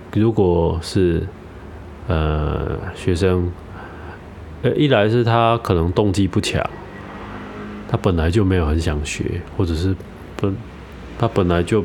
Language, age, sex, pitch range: Chinese, 20-39, male, 85-105 Hz